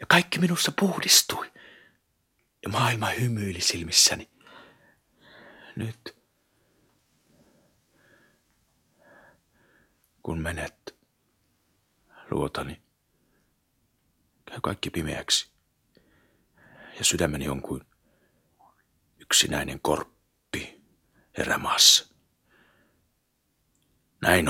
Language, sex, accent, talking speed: Finnish, male, native, 55 wpm